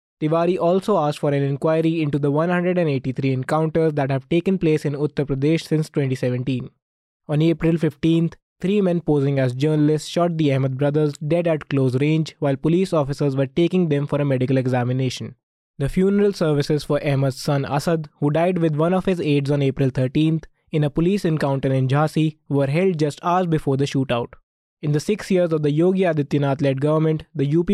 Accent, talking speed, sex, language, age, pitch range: Indian, 185 wpm, male, English, 20-39, 140-170 Hz